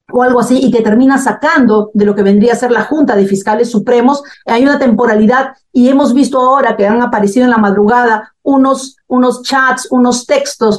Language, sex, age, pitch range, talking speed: Spanish, female, 50-69, 220-280 Hz, 200 wpm